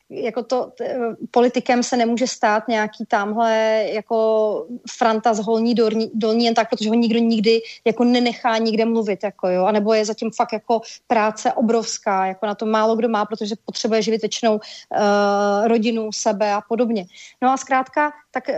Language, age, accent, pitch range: Czech, 30-49, native, 225-255 Hz